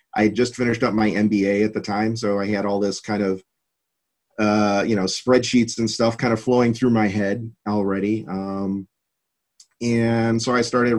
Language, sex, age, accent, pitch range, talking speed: English, male, 40-59, American, 105-125 Hz, 185 wpm